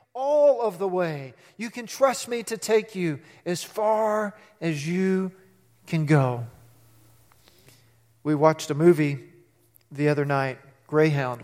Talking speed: 130 wpm